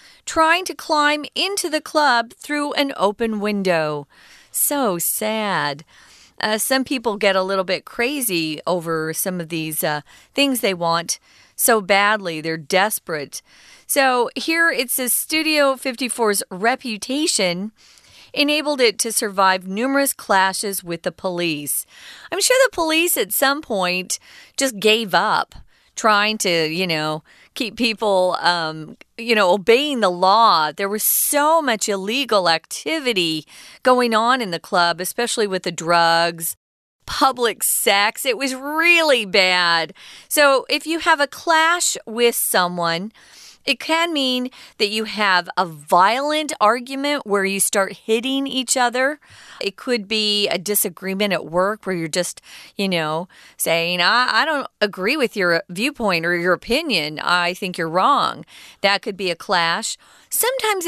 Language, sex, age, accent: Chinese, female, 40-59, American